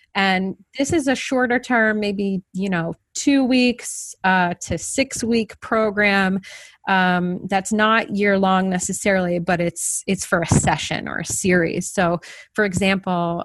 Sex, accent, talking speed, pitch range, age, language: female, American, 160 wpm, 175-215 Hz, 30-49, English